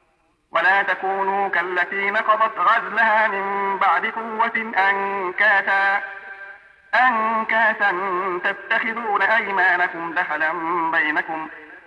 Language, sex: Arabic, male